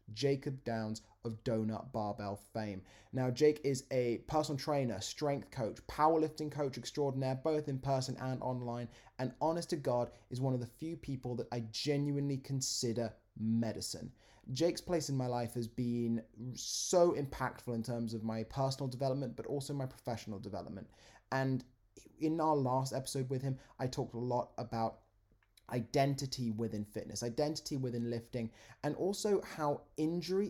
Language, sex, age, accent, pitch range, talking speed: English, male, 20-39, British, 115-140 Hz, 155 wpm